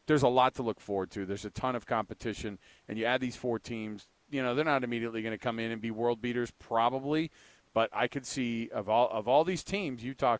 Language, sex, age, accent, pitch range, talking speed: English, male, 40-59, American, 110-145 Hz, 250 wpm